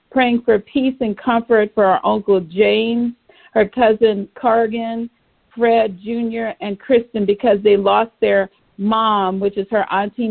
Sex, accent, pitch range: female, American, 200-235 Hz